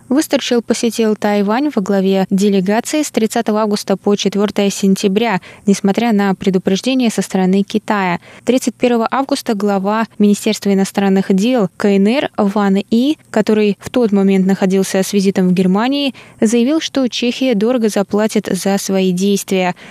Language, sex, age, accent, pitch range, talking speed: Russian, female, 20-39, native, 190-230 Hz, 135 wpm